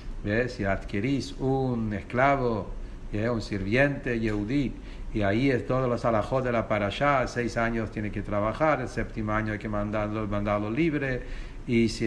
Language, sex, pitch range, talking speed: English, male, 110-130 Hz, 170 wpm